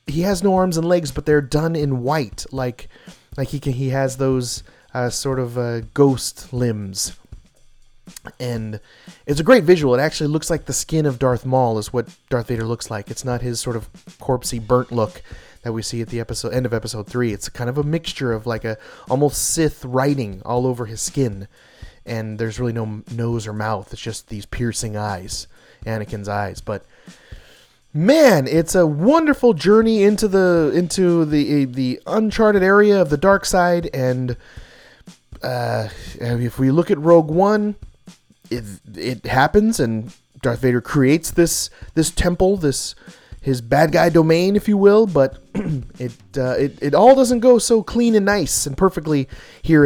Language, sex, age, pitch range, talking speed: English, male, 30-49, 115-165 Hz, 180 wpm